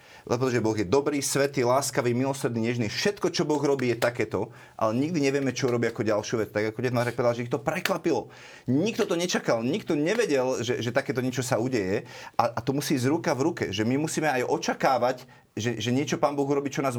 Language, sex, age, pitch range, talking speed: Slovak, male, 30-49, 120-140 Hz, 220 wpm